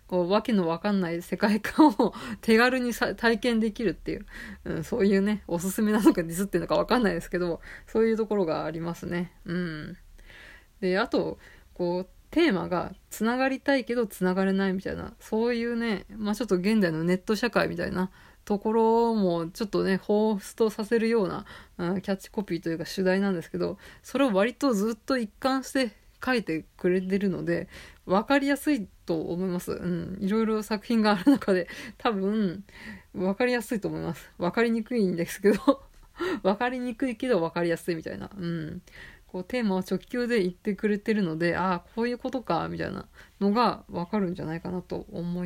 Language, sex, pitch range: Japanese, female, 180-230 Hz